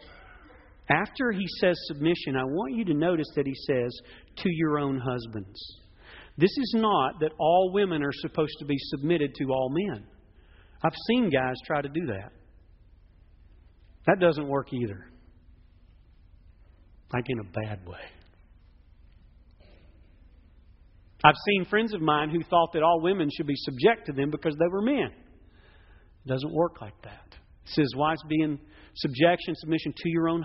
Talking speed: 160 wpm